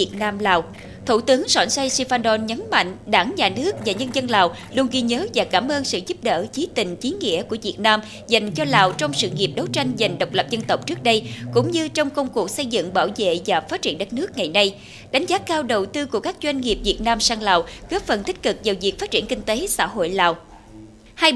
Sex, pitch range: female, 190-280 Hz